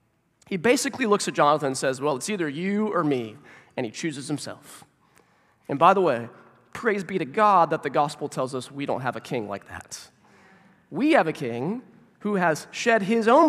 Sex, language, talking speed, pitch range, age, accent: male, English, 205 wpm, 135-210 Hz, 20-39, American